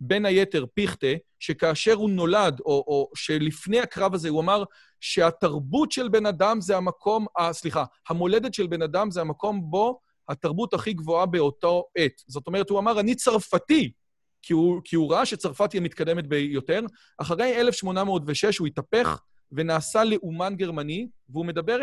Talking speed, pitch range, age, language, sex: 155 wpm, 155-210 Hz, 40-59, Hebrew, male